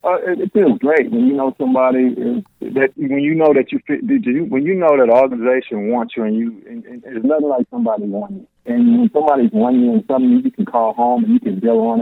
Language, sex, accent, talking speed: English, male, American, 250 wpm